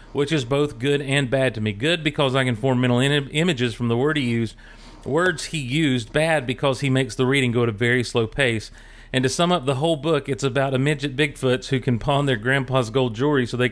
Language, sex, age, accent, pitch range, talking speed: English, male, 40-59, American, 120-150 Hz, 250 wpm